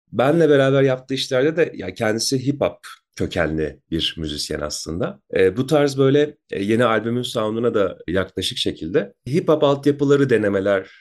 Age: 30-49